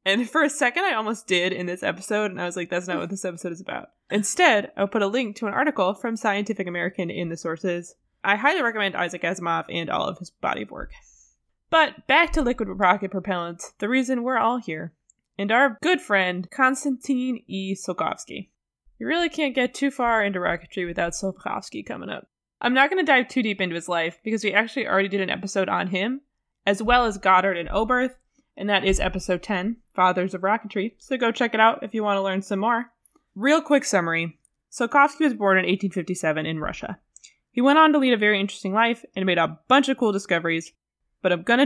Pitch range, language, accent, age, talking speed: 180-240 Hz, English, American, 20-39, 220 wpm